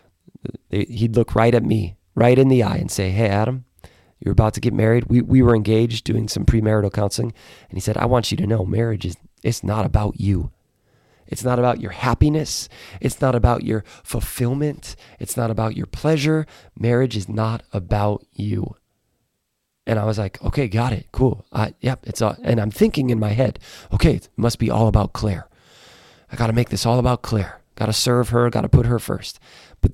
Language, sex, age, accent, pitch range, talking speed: English, male, 30-49, American, 105-120 Hz, 205 wpm